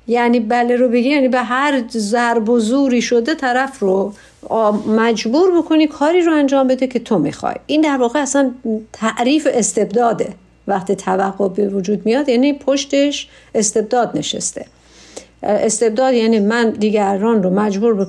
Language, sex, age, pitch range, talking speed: Persian, female, 50-69, 210-280 Hz, 145 wpm